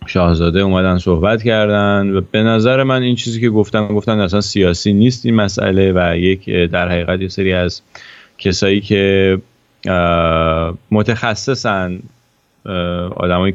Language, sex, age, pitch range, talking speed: English, male, 30-49, 90-110 Hz, 130 wpm